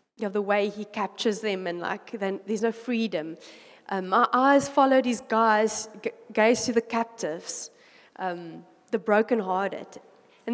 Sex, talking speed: female, 160 wpm